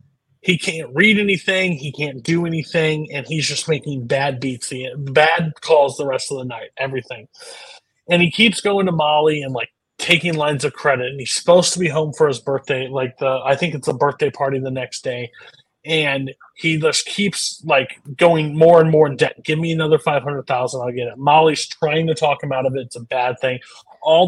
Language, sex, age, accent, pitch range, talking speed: English, male, 30-49, American, 135-160 Hz, 215 wpm